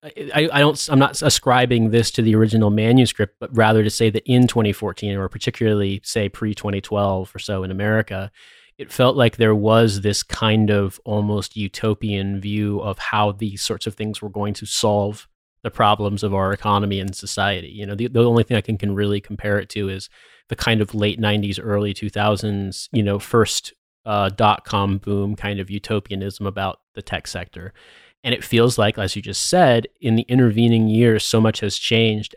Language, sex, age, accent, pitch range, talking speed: English, male, 30-49, American, 100-115 Hz, 195 wpm